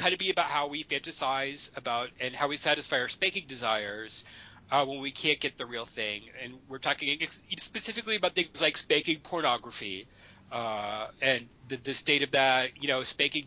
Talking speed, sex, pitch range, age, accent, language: 195 wpm, male, 120-165 Hz, 30-49, American, English